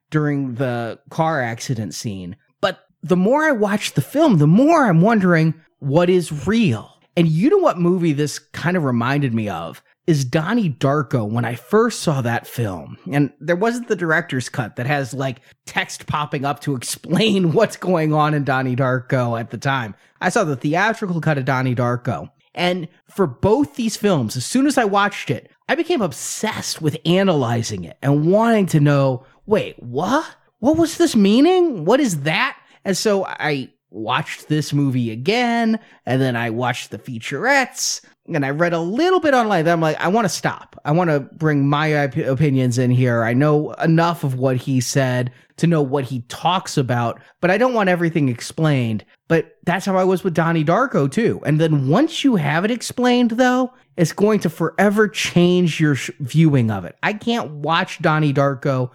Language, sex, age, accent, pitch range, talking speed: English, male, 30-49, American, 135-185 Hz, 190 wpm